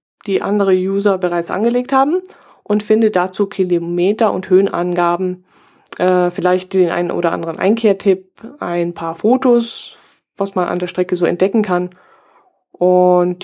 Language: German